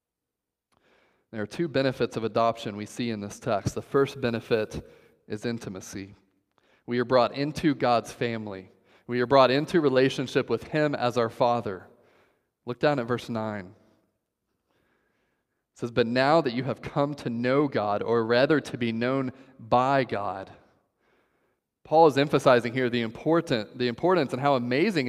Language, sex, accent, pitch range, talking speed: English, male, American, 120-150 Hz, 160 wpm